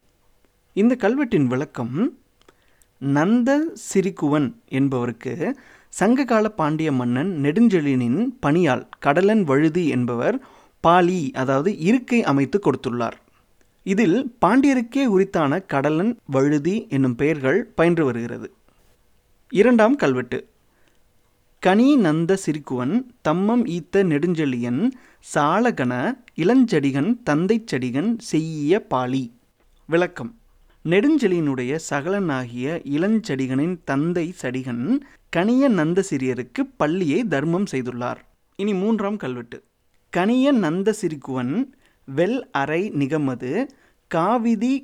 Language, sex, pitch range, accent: Tamil, male, 135-225 Hz, native